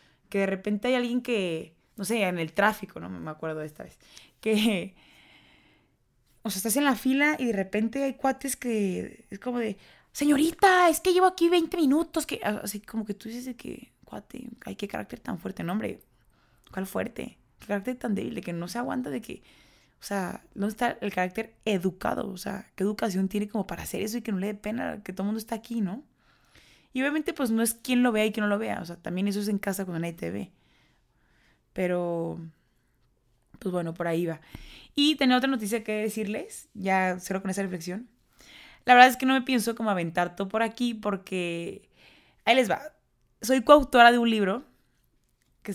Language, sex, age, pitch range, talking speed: Spanish, female, 20-39, 190-240 Hz, 210 wpm